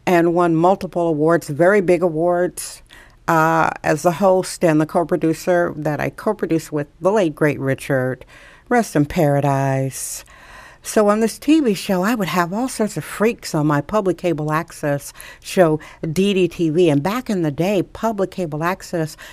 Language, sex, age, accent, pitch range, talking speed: English, female, 60-79, American, 155-200 Hz, 160 wpm